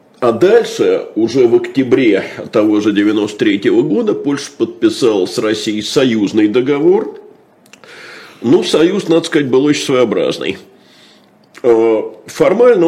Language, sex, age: Russian, male, 50-69